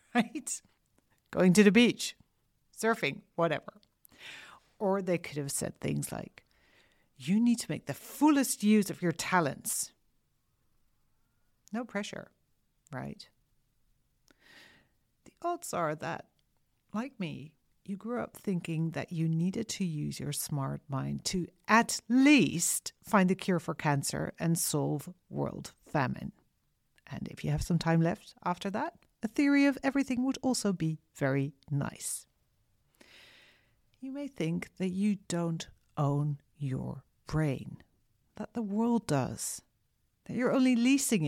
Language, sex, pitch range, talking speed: English, female, 145-215 Hz, 130 wpm